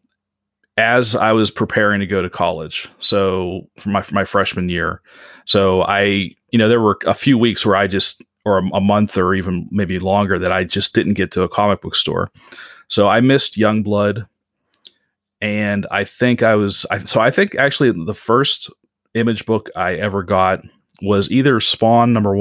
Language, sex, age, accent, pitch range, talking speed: English, male, 30-49, American, 95-110 Hz, 185 wpm